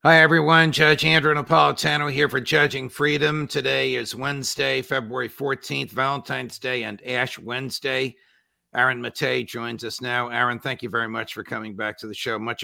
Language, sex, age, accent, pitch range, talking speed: English, male, 50-69, American, 105-125 Hz, 170 wpm